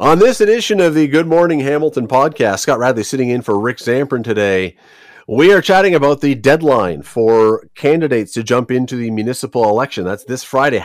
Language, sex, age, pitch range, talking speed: English, male, 30-49, 110-145 Hz, 190 wpm